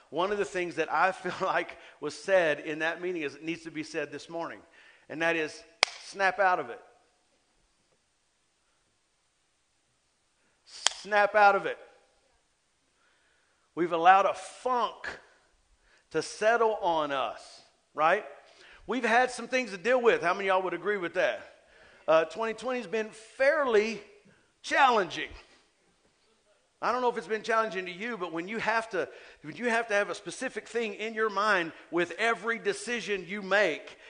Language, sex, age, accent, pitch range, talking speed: English, male, 50-69, American, 180-230 Hz, 155 wpm